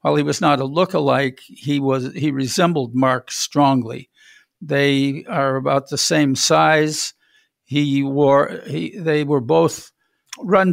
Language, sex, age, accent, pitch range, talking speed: English, male, 60-79, American, 130-155 Hz, 140 wpm